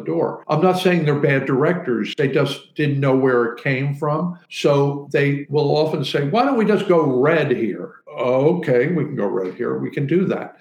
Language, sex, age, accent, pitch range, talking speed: English, male, 60-79, American, 120-160 Hz, 210 wpm